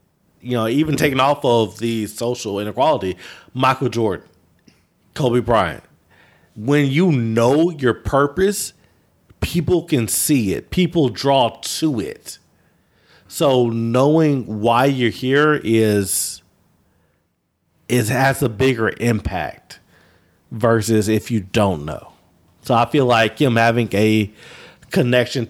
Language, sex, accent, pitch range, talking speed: English, male, American, 100-125 Hz, 120 wpm